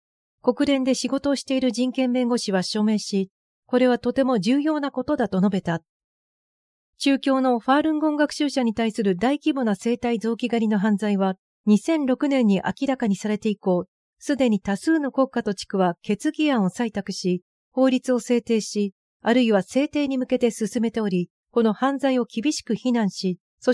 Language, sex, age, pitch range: Japanese, female, 40-59, 200-265 Hz